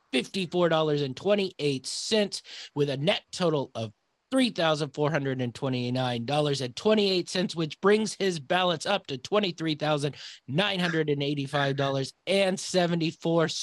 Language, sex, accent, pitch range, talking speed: English, male, American, 145-185 Hz, 55 wpm